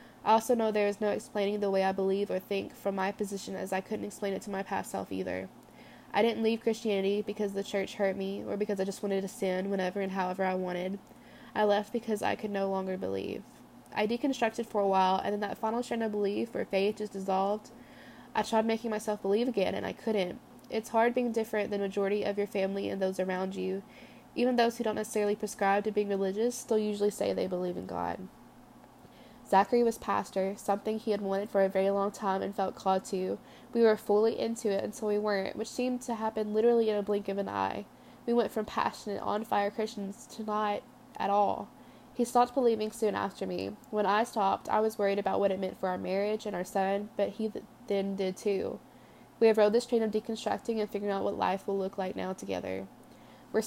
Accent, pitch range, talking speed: American, 195-220 Hz, 225 wpm